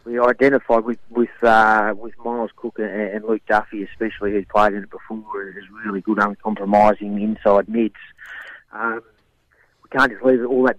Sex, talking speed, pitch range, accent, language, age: male, 180 wpm, 105-120 Hz, Australian, English, 40-59